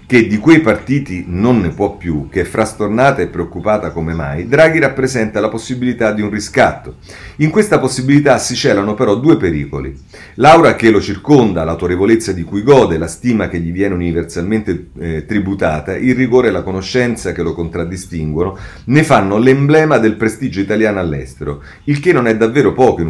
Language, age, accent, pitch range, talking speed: Italian, 40-59, native, 85-120 Hz, 175 wpm